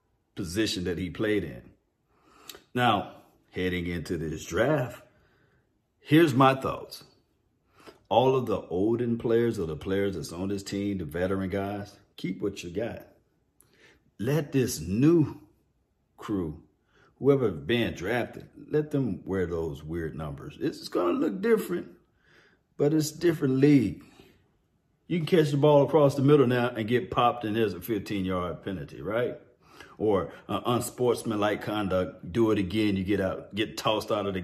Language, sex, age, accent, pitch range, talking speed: English, male, 40-59, American, 100-135 Hz, 150 wpm